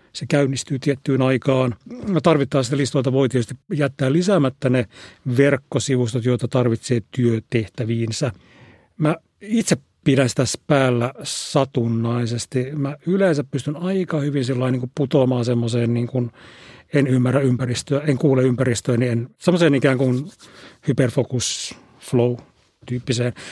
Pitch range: 120-145 Hz